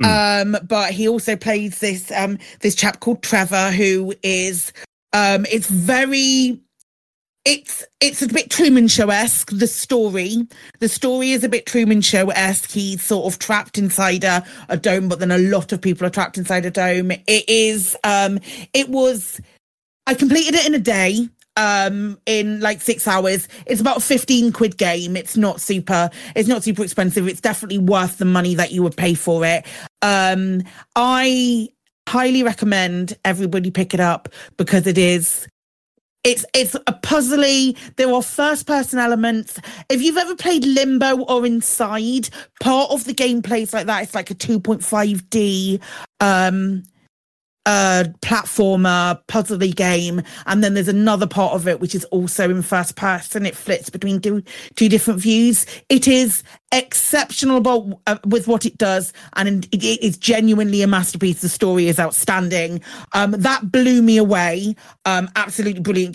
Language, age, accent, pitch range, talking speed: English, 40-59, British, 185-235 Hz, 165 wpm